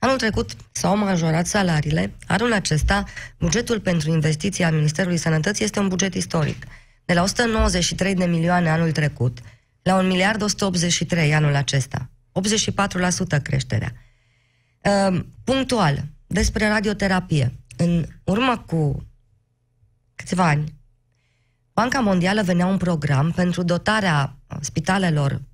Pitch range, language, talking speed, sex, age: 135-185 Hz, Romanian, 115 wpm, female, 20-39